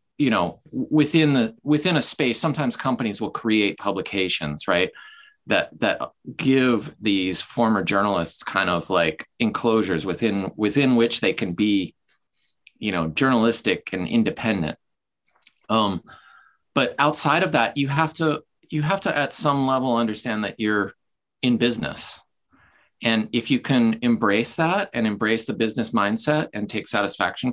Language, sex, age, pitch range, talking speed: English, male, 30-49, 100-145 Hz, 145 wpm